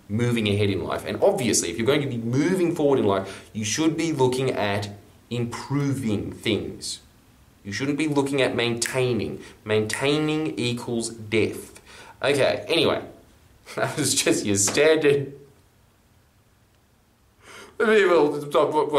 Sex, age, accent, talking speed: male, 20-39, Australian, 120 wpm